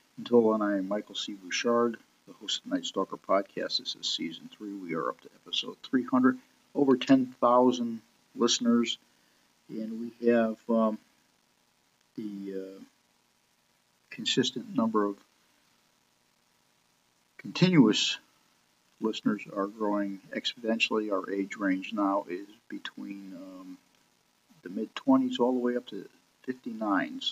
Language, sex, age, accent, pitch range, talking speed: English, male, 50-69, American, 100-125 Hz, 130 wpm